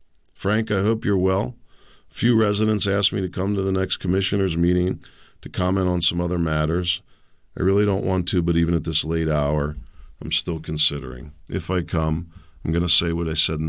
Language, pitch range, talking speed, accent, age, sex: English, 75-90 Hz, 210 wpm, American, 50-69, male